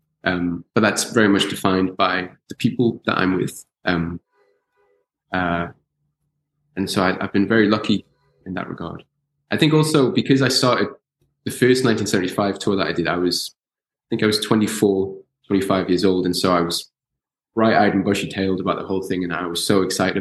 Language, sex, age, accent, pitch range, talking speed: English, male, 20-39, British, 90-115 Hz, 195 wpm